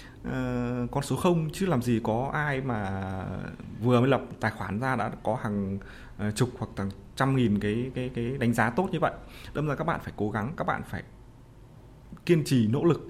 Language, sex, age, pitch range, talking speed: Vietnamese, male, 20-39, 115-145 Hz, 215 wpm